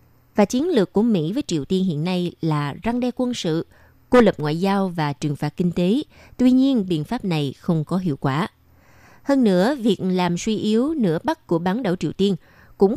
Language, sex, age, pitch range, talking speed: Vietnamese, female, 20-39, 170-230 Hz, 215 wpm